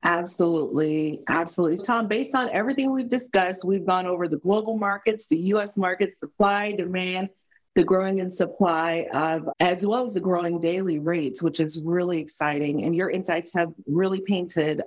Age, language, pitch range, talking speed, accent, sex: 40-59, English, 155-185 Hz, 165 wpm, American, female